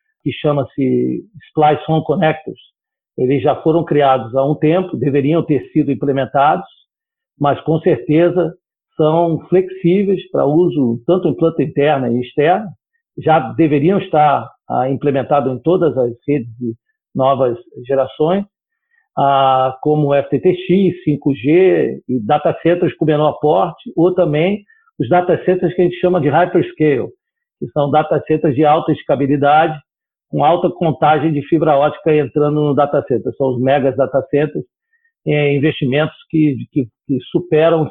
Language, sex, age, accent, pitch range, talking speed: Portuguese, male, 50-69, Brazilian, 140-175 Hz, 140 wpm